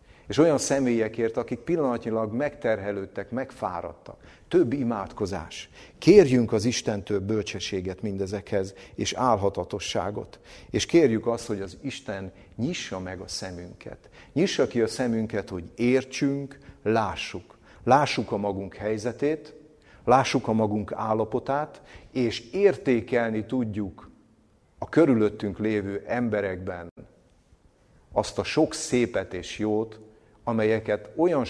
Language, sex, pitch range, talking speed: Hungarian, male, 95-120 Hz, 105 wpm